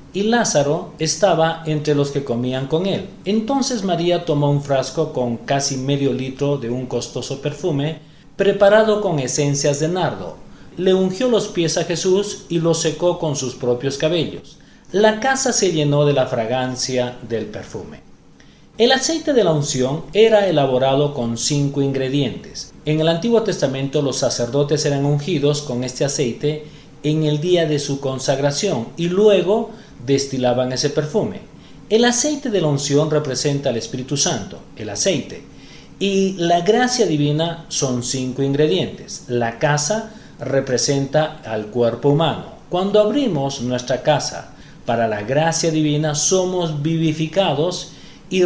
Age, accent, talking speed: 40-59, Mexican, 145 wpm